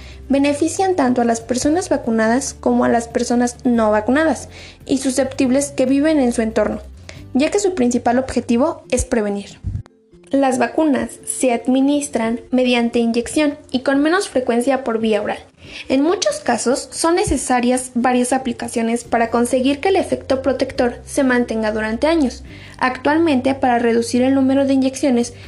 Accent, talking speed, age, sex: Mexican, 150 wpm, 10-29, female